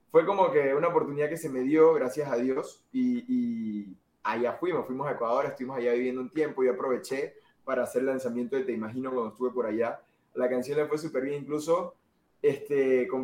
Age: 20-39